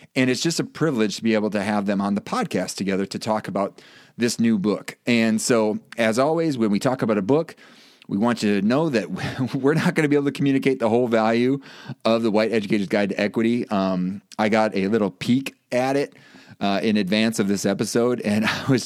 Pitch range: 100-125 Hz